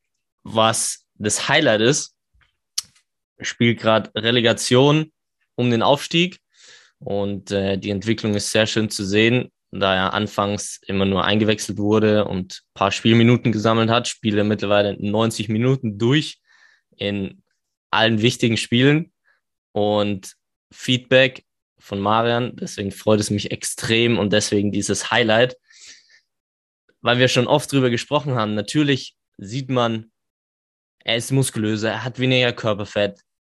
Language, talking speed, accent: German, 130 wpm, German